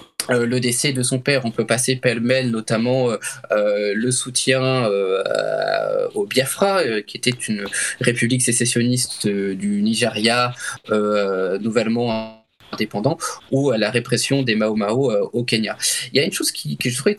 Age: 20-39